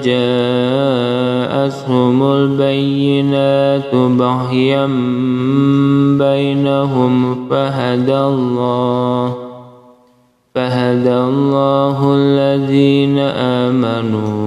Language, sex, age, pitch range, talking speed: Indonesian, male, 20-39, 125-140 Hz, 40 wpm